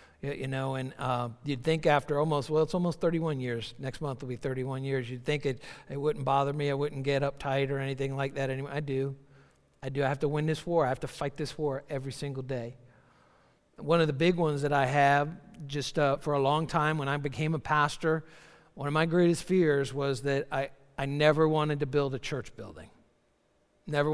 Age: 50-69